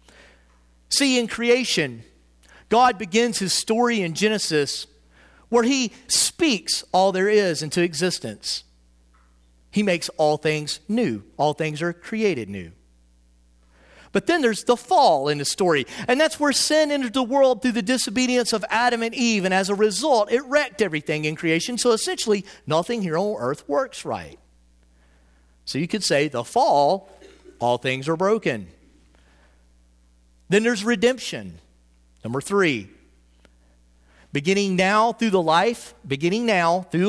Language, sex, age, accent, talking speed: English, male, 40-59, American, 145 wpm